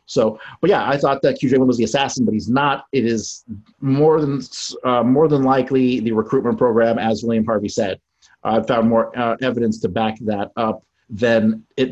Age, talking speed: 30-49, 205 wpm